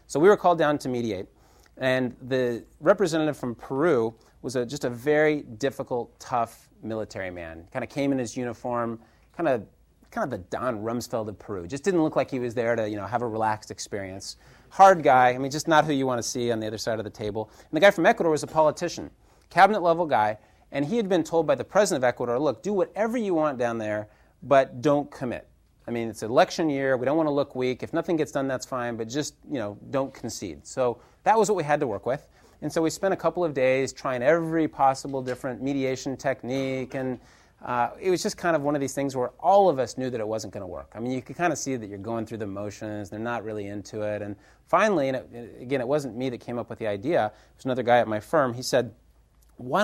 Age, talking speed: 30-49, 245 wpm